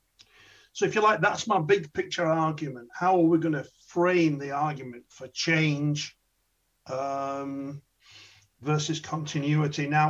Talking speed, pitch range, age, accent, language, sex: 135 wpm, 135-170 Hz, 50-69, British, English, male